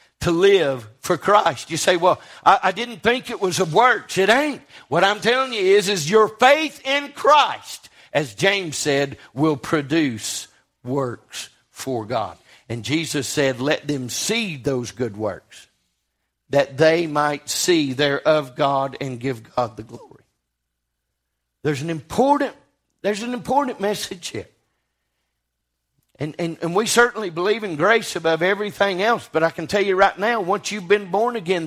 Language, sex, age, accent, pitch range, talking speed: English, male, 50-69, American, 130-200 Hz, 165 wpm